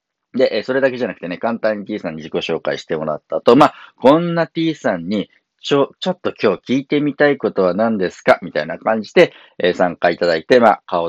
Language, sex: Japanese, male